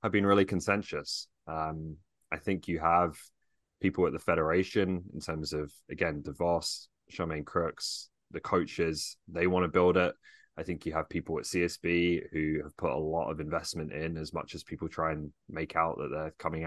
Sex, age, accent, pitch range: male, 20-39, British, 80-85 Hz